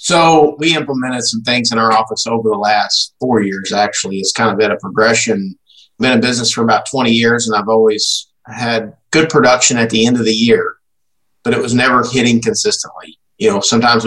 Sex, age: male, 50-69